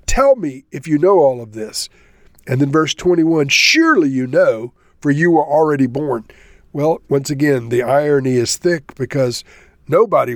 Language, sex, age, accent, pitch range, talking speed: English, male, 50-69, American, 125-170 Hz, 170 wpm